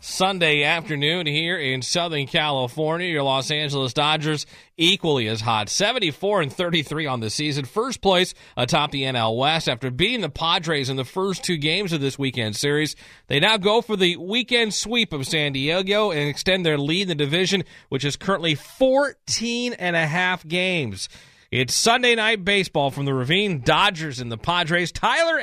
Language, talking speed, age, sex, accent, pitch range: English, 175 wpm, 40-59, male, American, 145-195 Hz